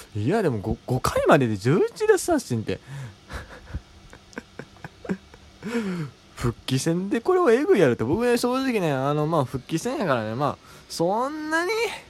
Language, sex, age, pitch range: Japanese, male, 20-39, 115-185 Hz